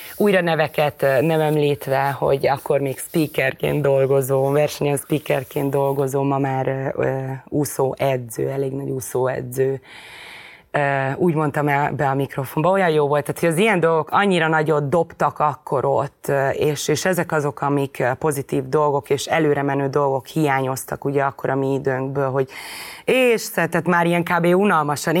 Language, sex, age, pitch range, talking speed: Hungarian, female, 20-39, 135-165 Hz, 150 wpm